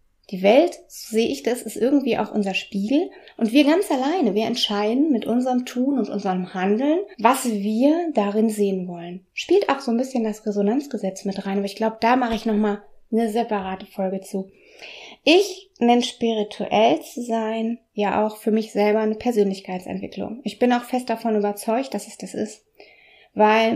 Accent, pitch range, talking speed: German, 205-250 Hz, 180 wpm